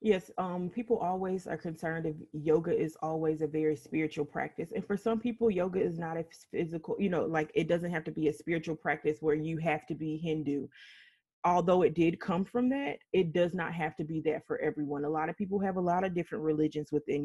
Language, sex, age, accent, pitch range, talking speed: English, female, 20-39, American, 155-190 Hz, 230 wpm